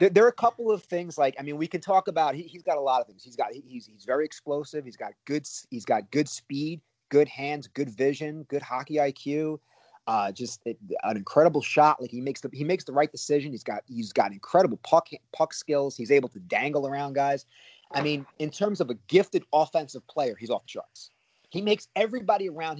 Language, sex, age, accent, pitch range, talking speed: English, male, 30-49, American, 125-165 Hz, 230 wpm